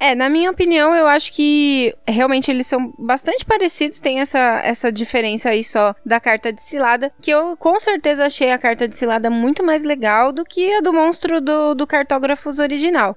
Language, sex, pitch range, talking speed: Portuguese, female, 230-290 Hz, 195 wpm